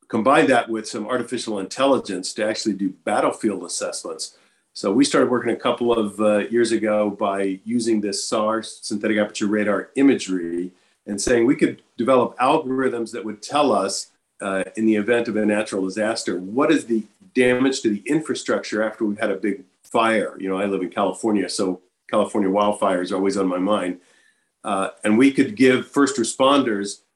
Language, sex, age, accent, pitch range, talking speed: English, male, 40-59, American, 100-120 Hz, 180 wpm